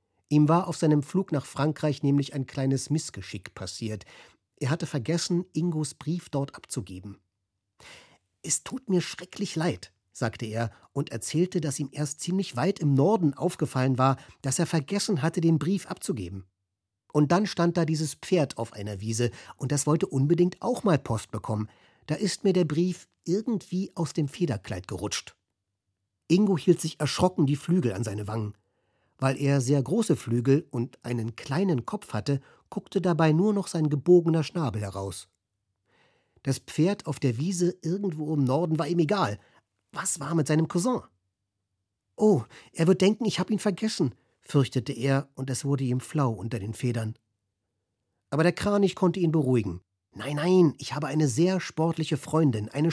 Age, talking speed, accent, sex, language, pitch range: 50-69, 165 wpm, German, male, German, 115-175 Hz